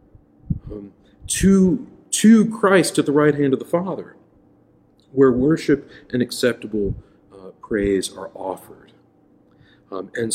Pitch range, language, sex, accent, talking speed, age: 120-160 Hz, English, male, American, 120 wpm, 40-59